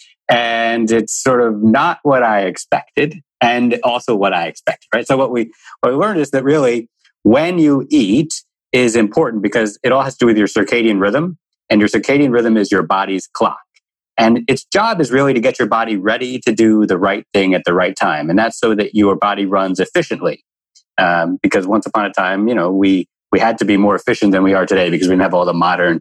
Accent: American